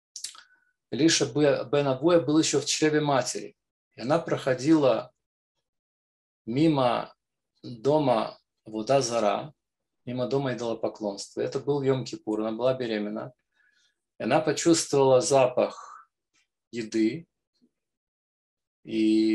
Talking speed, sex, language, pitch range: 85 wpm, male, Russian, 120-150 Hz